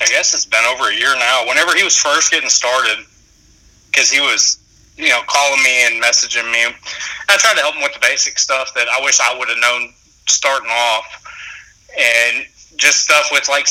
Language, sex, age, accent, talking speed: English, male, 30-49, American, 205 wpm